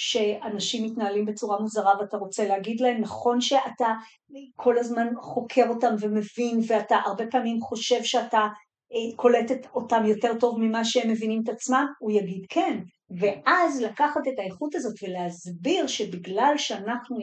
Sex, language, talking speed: female, Hebrew, 145 wpm